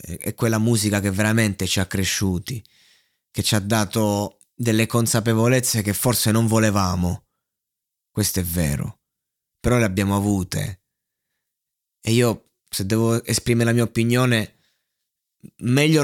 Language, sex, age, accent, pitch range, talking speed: Italian, male, 20-39, native, 105-125 Hz, 125 wpm